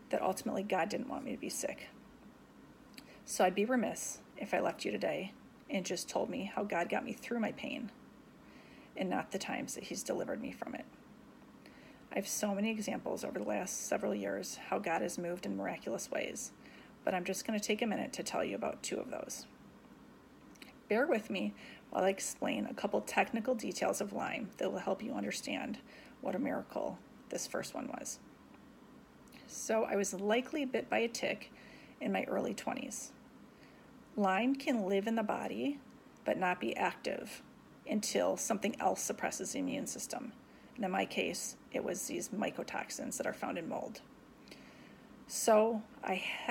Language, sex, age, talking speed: English, female, 30-49, 180 wpm